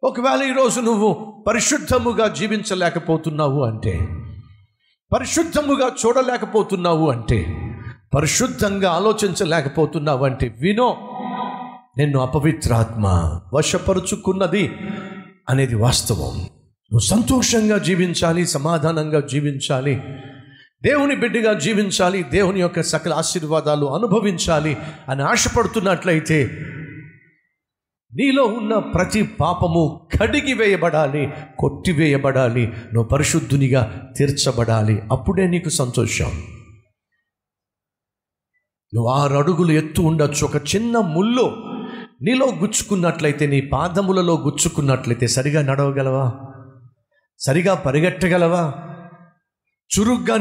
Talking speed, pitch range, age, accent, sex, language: 75 wpm, 140-205 Hz, 50-69, native, male, Telugu